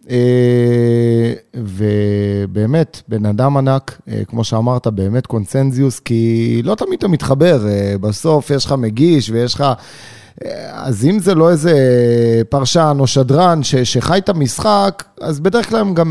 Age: 30-49